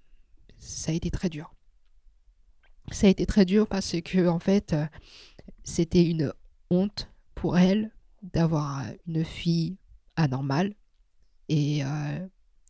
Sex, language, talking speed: female, French, 120 wpm